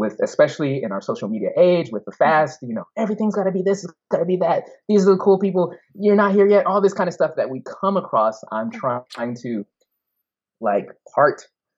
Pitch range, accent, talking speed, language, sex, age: 105-145 Hz, American, 220 wpm, English, male, 20-39